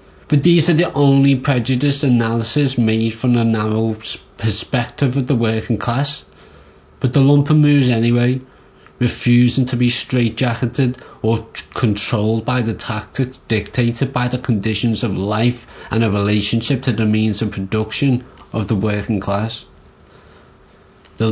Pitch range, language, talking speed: 105-120 Hz, English, 140 wpm